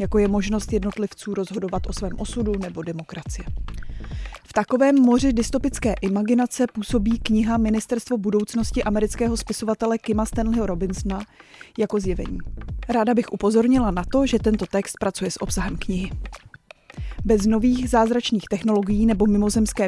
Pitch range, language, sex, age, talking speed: 205-230 Hz, Czech, female, 20-39, 135 wpm